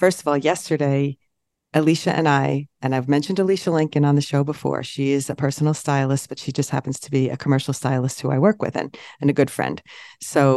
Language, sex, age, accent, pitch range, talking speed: English, female, 40-59, American, 135-155 Hz, 225 wpm